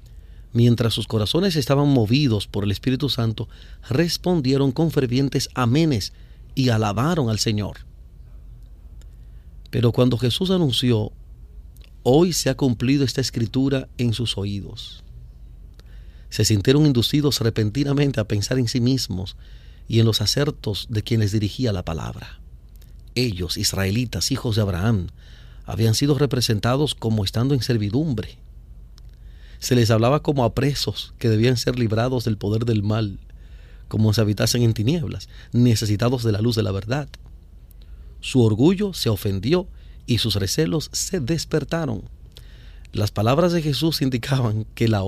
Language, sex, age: Spanish, male, 40-59